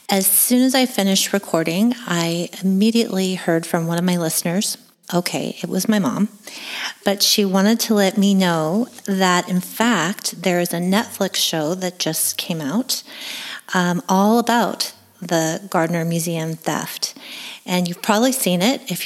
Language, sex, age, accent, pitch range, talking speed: English, female, 30-49, American, 175-210 Hz, 160 wpm